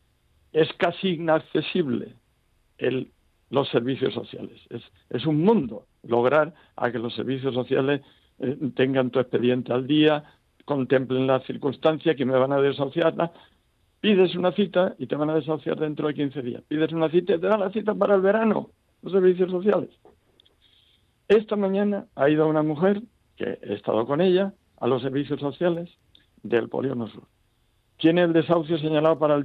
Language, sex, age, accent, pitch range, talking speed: Spanish, male, 60-79, Spanish, 130-180 Hz, 165 wpm